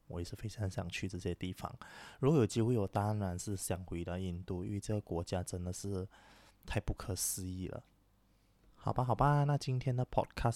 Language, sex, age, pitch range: Chinese, male, 20-39, 95-115 Hz